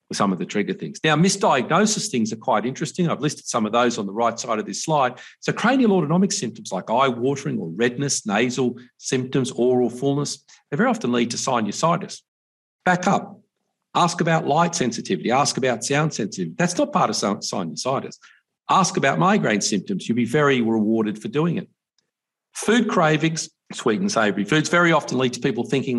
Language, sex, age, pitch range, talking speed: English, male, 50-69, 120-180 Hz, 185 wpm